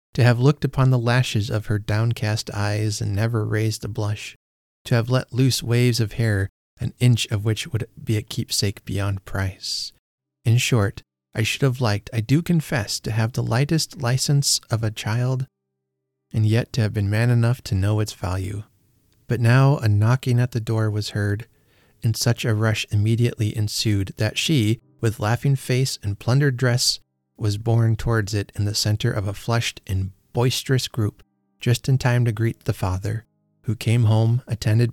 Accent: American